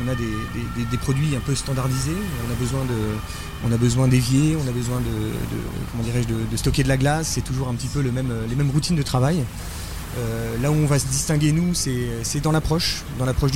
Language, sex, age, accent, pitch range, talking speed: French, male, 30-49, French, 115-140 Hz, 250 wpm